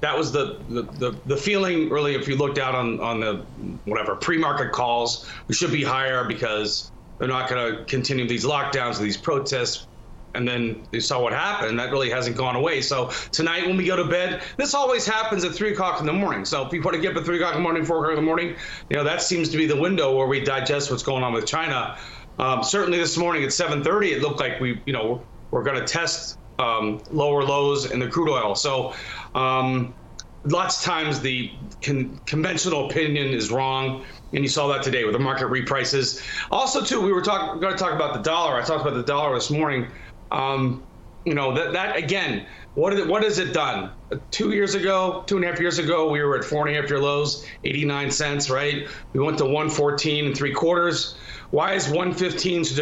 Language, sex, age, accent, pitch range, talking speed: English, male, 30-49, American, 130-170 Hz, 230 wpm